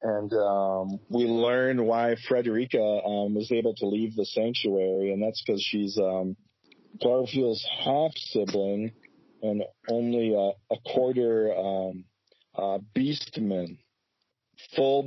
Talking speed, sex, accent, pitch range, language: 120 wpm, male, American, 100-120 Hz, English